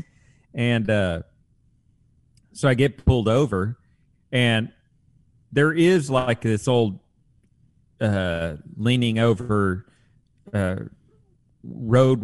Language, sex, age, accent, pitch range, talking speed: English, male, 40-59, American, 100-125 Hz, 90 wpm